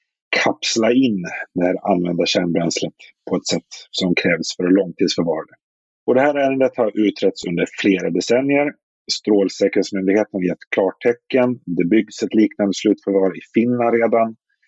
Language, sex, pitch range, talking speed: Swedish, male, 95-125 Hz, 145 wpm